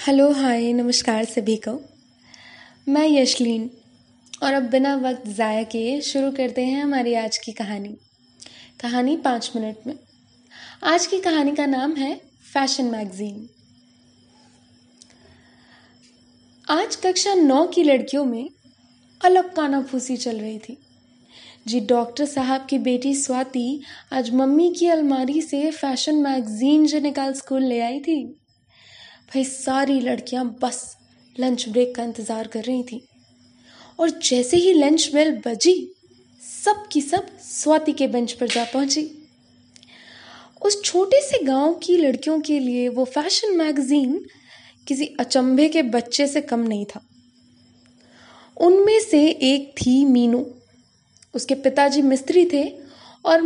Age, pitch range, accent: 10-29, 235-300 Hz, native